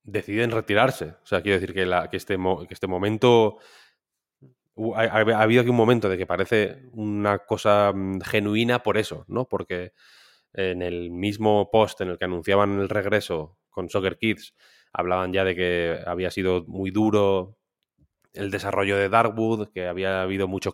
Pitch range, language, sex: 95-105 Hz, Spanish, male